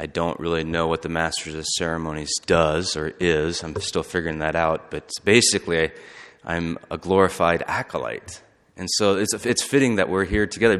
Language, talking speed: English, 185 wpm